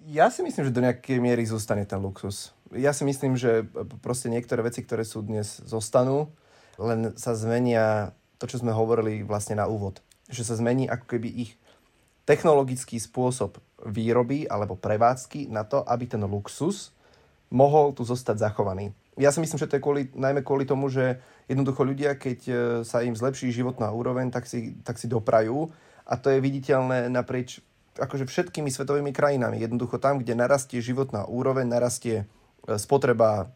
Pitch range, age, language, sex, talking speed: 110-135 Hz, 30-49, Slovak, male, 165 wpm